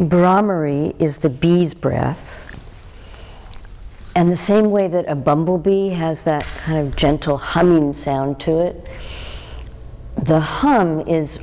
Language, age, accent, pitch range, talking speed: English, 60-79, American, 135-165 Hz, 125 wpm